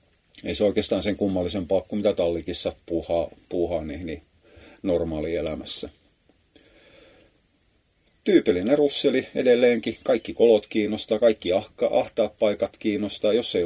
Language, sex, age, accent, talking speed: Finnish, male, 30-49, native, 110 wpm